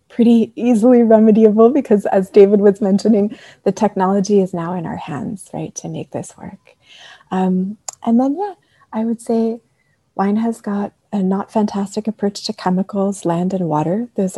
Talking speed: 170 wpm